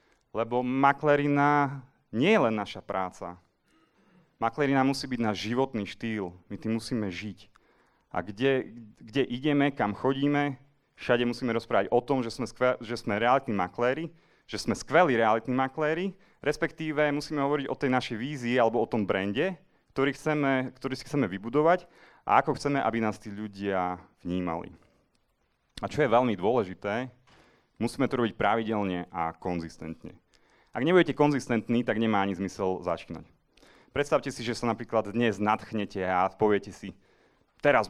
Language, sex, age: Czech, male, 30-49